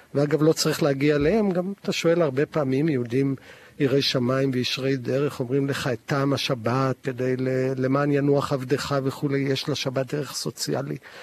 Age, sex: 50-69, male